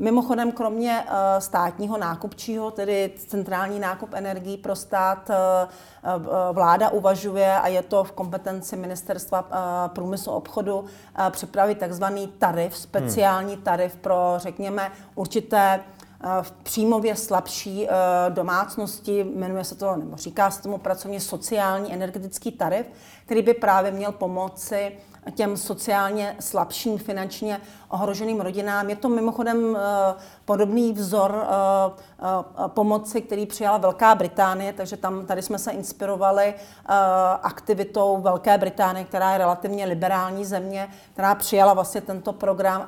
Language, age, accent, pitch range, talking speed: Czech, 40-59, native, 190-205 Hz, 115 wpm